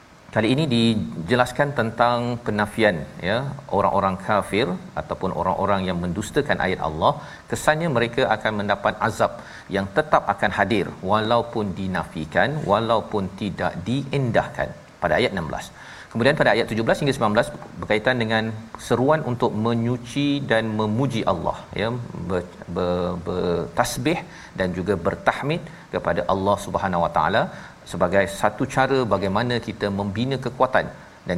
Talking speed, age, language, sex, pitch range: 120 wpm, 40-59, Malayalam, male, 95-120 Hz